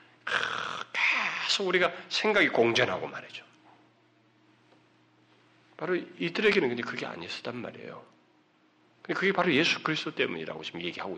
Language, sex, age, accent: Korean, male, 40-59, native